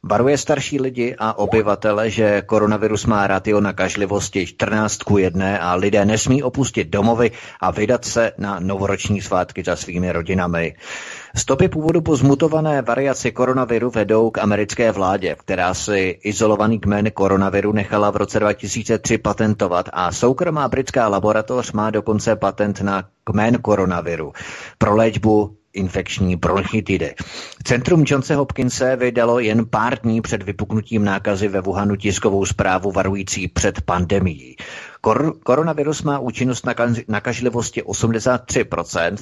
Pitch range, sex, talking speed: 100-115 Hz, male, 130 wpm